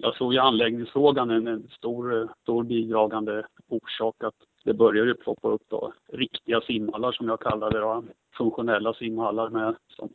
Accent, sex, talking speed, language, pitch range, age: Norwegian, male, 155 wpm, Swedish, 110-120 Hz, 30-49